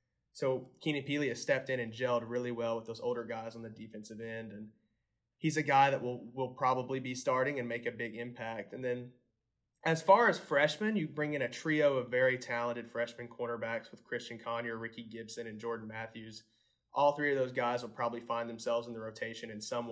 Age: 20-39